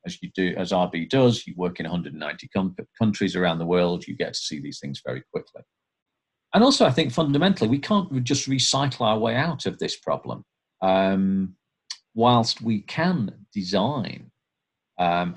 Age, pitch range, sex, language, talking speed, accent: 40-59, 90-125 Hz, male, English, 170 wpm, British